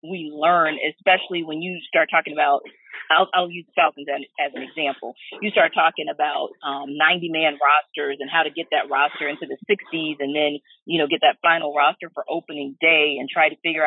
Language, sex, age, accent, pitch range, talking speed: English, female, 40-59, American, 155-230 Hz, 205 wpm